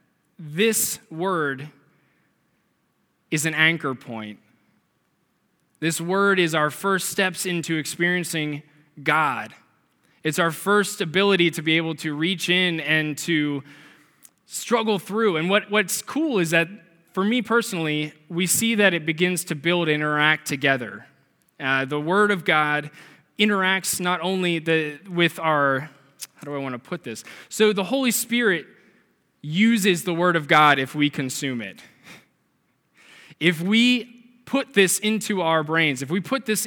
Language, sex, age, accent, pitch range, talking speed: English, male, 20-39, American, 150-185 Hz, 145 wpm